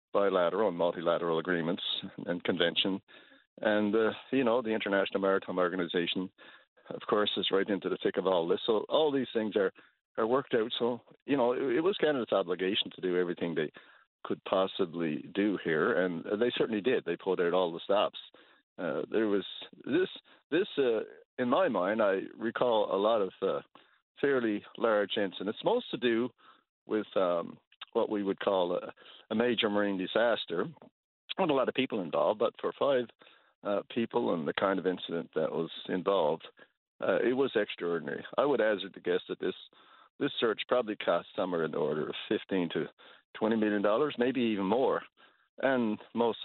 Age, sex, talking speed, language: 50-69, male, 180 wpm, English